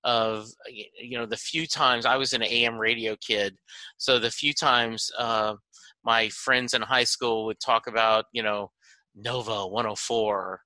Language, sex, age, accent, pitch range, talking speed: English, male, 30-49, American, 110-125 Hz, 165 wpm